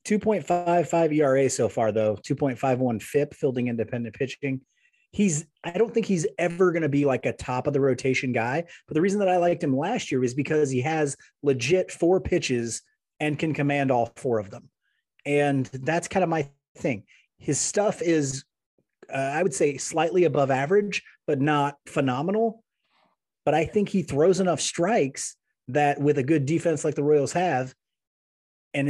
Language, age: English, 30-49